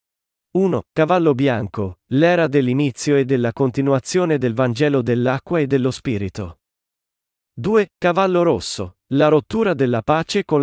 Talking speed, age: 125 wpm, 40-59